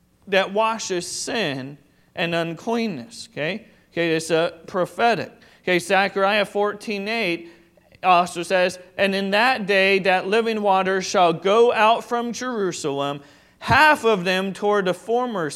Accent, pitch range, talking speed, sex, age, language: American, 175-210 Hz, 125 wpm, male, 30-49, English